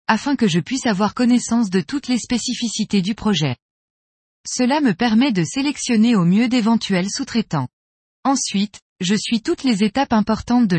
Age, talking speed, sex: 20-39, 160 wpm, female